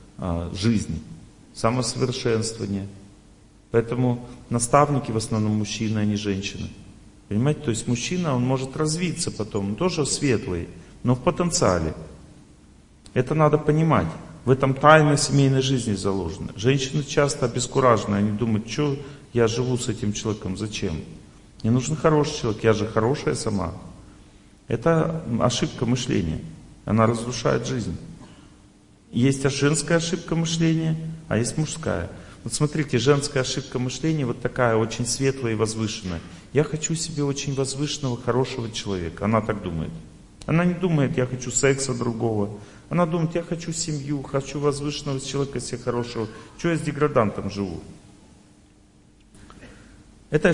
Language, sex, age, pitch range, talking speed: Russian, male, 40-59, 105-145 Hz, 130 wpm